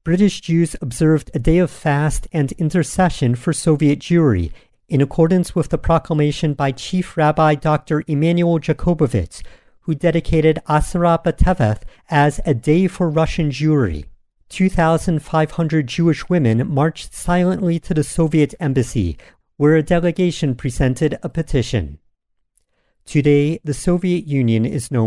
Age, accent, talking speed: 50-69, American, 130 wpm